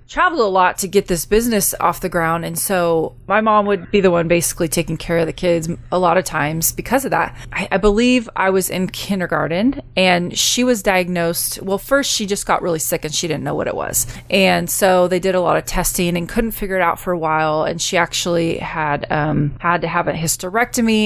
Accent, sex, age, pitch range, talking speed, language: American, female, 20-39, 165-205 Hz, 235 wpm, English